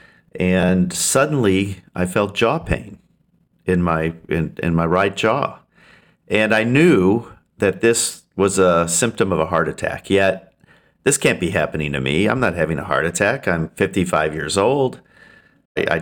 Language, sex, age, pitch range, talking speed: English, male, 50-69, 90-110 Hz, 160 wpm